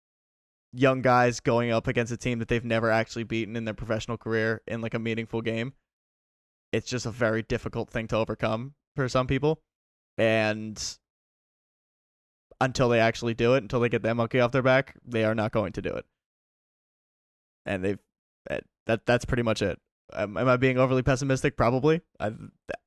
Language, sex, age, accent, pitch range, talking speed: English, male, 20-39, American, 110-130 Hz, 180 wpm